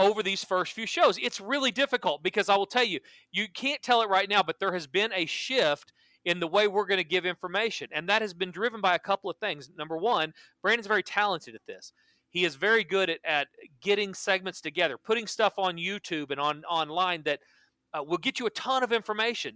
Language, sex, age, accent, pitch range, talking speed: English, male, 40-59, American, 180-240 Hz, 230 wpm